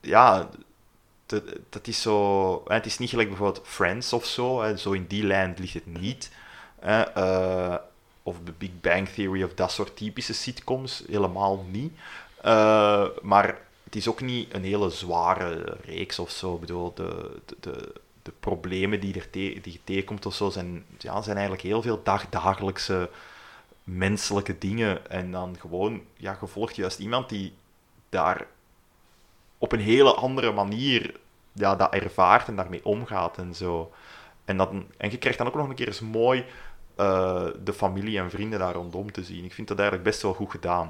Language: Dutch